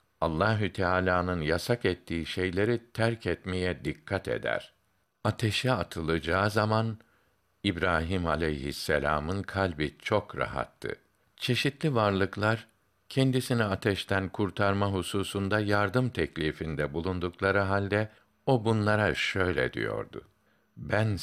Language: Turkish